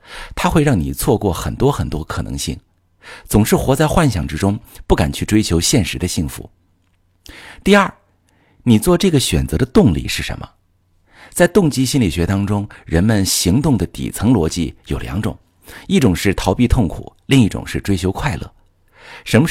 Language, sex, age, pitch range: Chinese, male, 50-69, 85-115 Hz